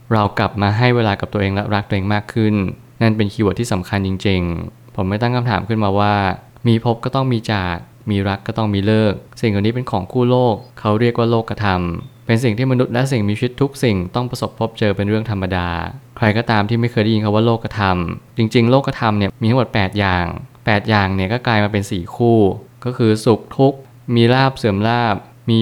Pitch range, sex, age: 100-120 Hz, male, 20-39